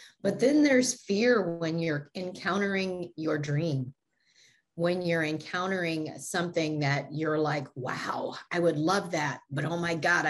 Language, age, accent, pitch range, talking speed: English, 40-59, American, 155-205 Hz, 145 wpm